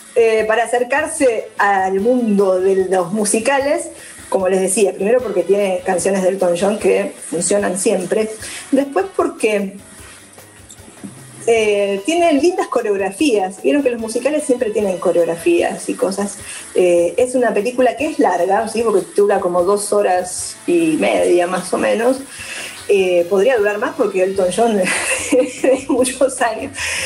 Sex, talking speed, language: female, 140 wpm, Spanish